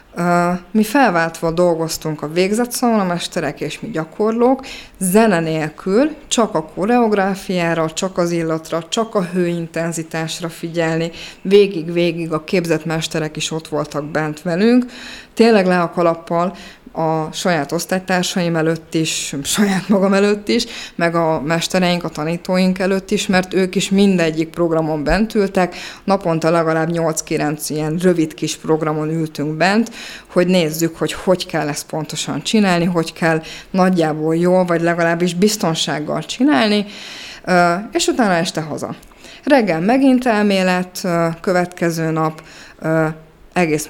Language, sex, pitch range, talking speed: Hungarian, female, 160-185 Hz, 125 wpm